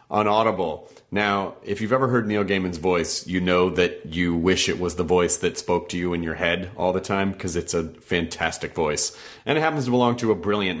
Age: 30-49